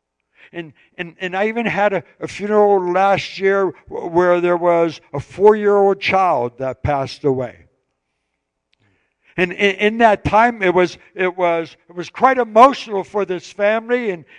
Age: 60-79